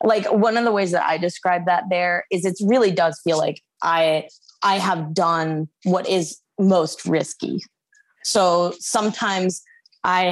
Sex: female